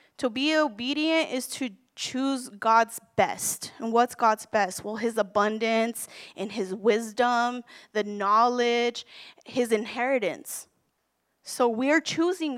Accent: American